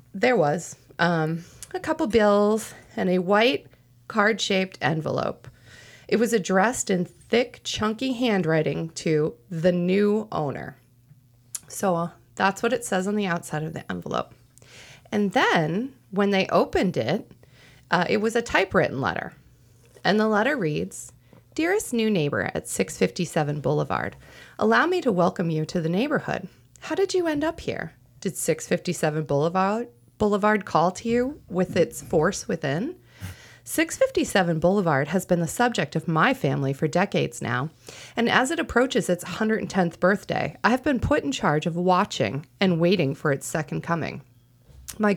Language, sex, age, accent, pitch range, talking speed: English, female, 30-49, American, 155-220 Hz, 155 wpm